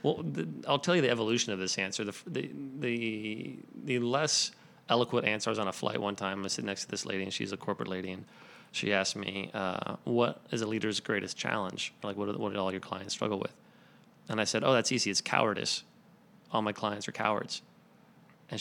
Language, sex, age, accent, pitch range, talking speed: English, male, 30-49, American, 100-120 Hz, 225 wpm